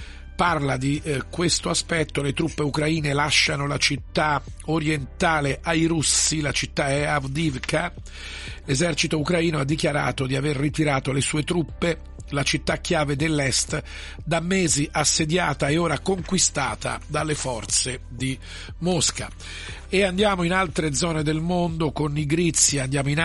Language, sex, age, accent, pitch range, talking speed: Italian, male, 50-69, native, 140-170 Hz, 135 wpm